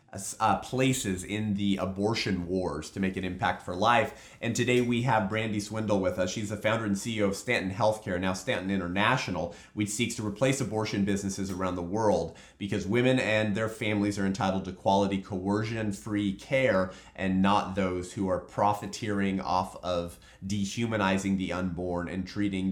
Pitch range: 90-110 Hz